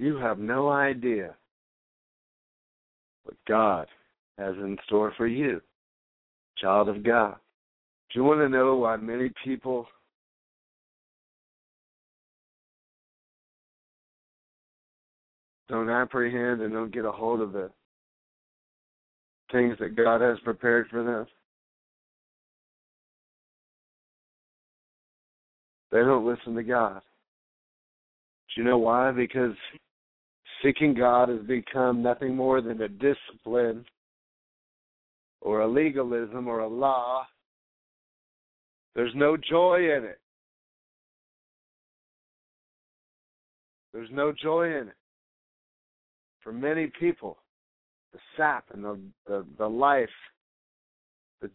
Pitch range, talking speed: 115-135 Hz, 95 wpm